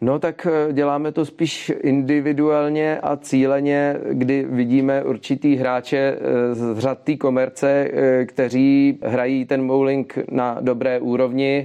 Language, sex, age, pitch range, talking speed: Czech, male, 30-49, 110-130 Hz, 120 wpm